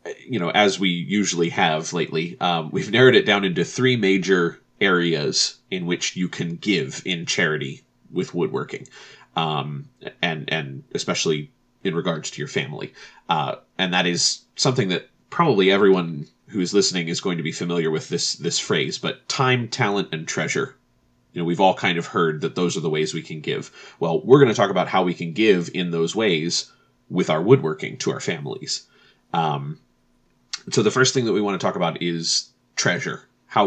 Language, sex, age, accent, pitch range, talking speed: English, male, 30-49, American, 75-95 Hz, 190 wpm